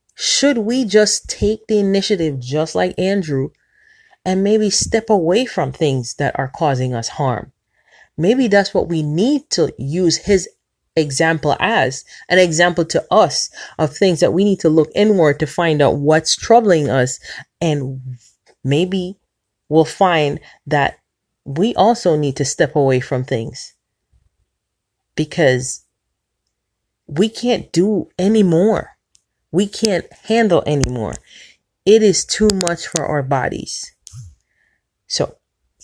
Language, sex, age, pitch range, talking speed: English, female, 30-49, 145-205 Hz, 130 wpm